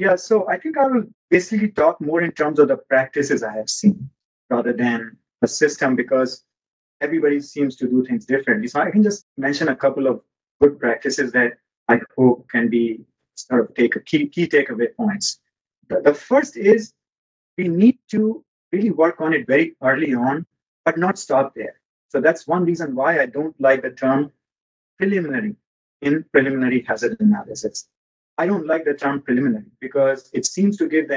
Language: English